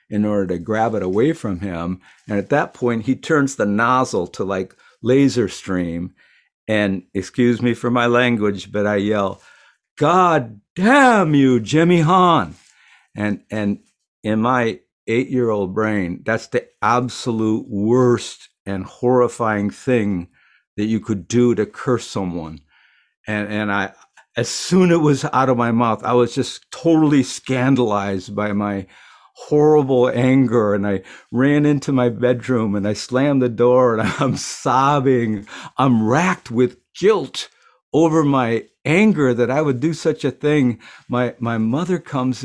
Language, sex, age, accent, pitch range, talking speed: English, male, 60-79, American, 110-145 Hz, 150 wpm